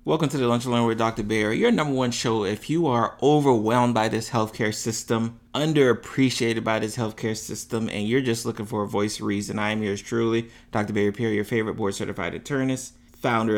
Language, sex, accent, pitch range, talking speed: English, male, American, 100-120 Hz, 200 wpm